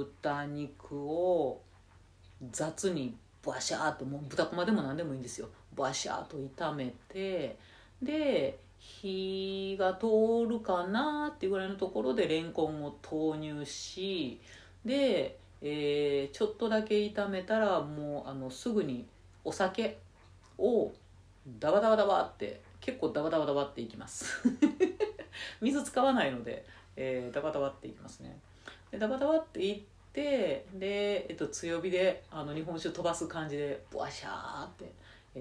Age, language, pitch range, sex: 40-59, Japanese, 130-210 Hz, female